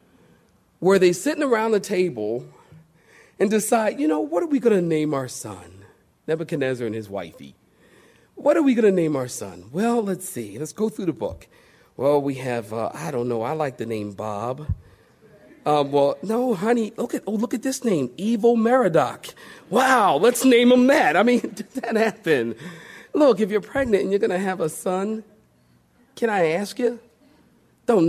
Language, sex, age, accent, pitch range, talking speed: English, male, 40-59, American, 145-225 Hz, 180 wpm